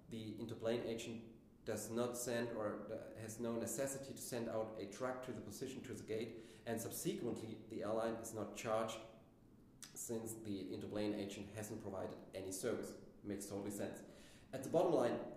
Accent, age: German, 30-49